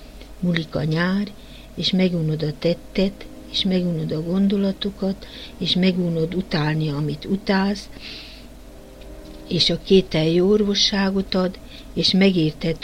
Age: 60-79